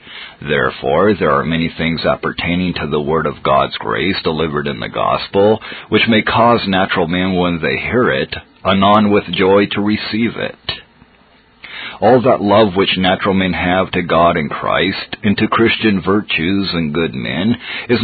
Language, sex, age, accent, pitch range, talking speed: English, male, 40-59, American, 95-115 Hz, 165 wpm